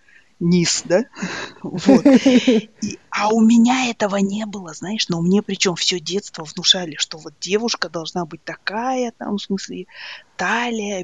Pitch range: 185-245 Hz